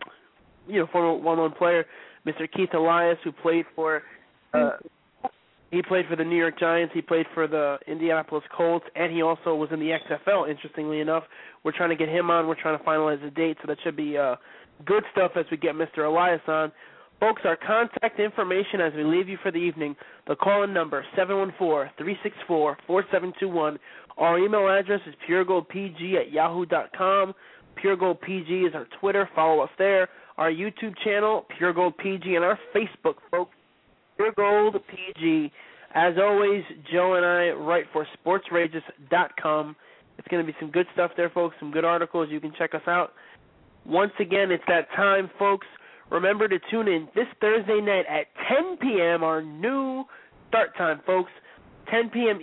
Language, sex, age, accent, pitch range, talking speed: English, male, 20-39, American, 160-195 Hz, 170 wpm